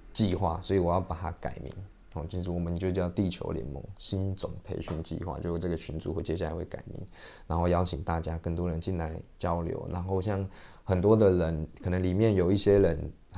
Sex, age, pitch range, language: male, 20-39, 85-100 Hz, Chinese